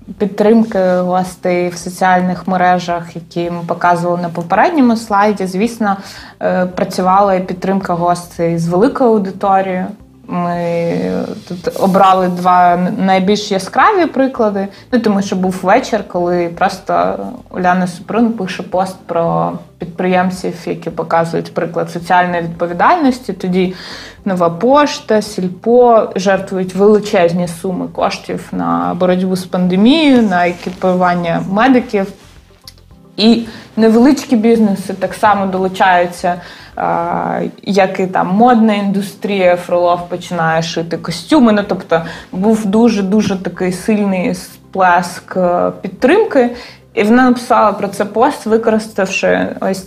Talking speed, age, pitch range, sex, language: 110 wpm, 20-39, 175-215 Hz, female, Ukrainian